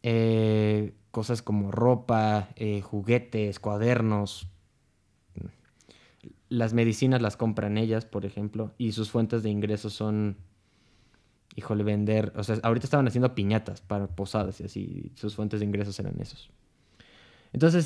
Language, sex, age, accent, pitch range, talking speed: Spanish, male, 20-39, Mexican, 105-120 Hz, 135 wpm